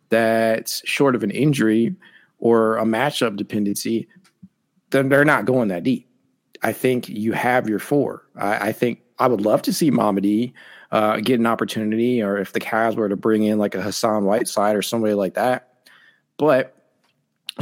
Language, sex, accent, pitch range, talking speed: English, male, American, 105-125 Hz, 180 wpm